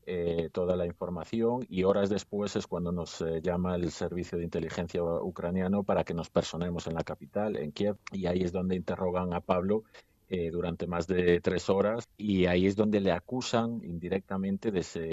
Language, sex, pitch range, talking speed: Spanish, male, 85-95 Hz, 190 wpm